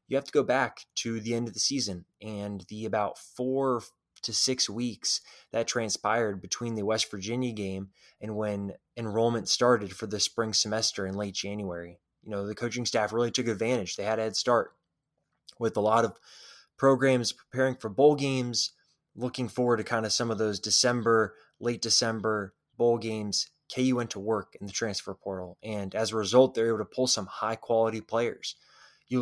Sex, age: male, 20-39